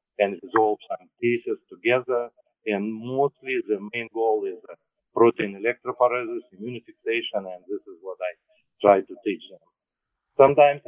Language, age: English, 50-69